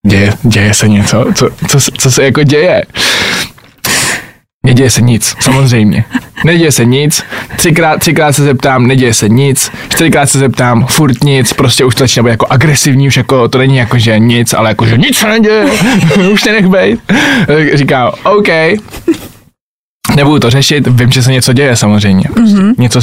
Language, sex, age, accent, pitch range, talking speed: Czech, male, 20-39, native, 130-185 Hz, 170 wpm